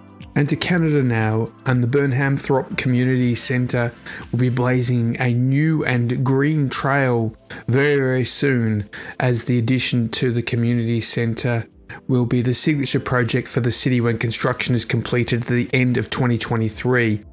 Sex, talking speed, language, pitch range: male, 150 wpm, English, 115-135 Hz